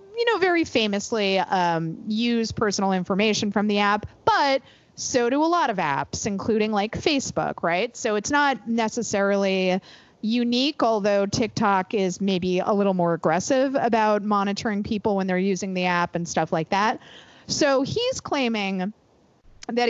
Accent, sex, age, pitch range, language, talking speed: American, female, 30-49, 190-275 Hz, English, 155 wpm